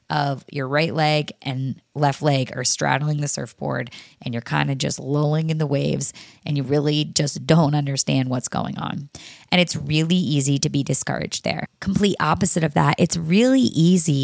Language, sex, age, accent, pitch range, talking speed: English, female, 20-39, American, 145-205 Hz, 185 wpm